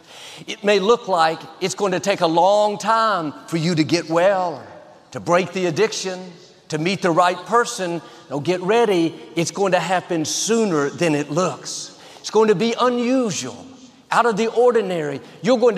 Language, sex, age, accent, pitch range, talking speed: English, male, 50-69, American, 165-220 Hz, 185 wpm